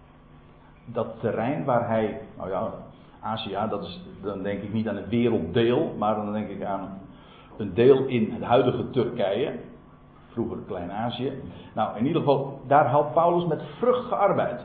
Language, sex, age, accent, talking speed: Dutch, male, 50-69, Dutch, 165 wpm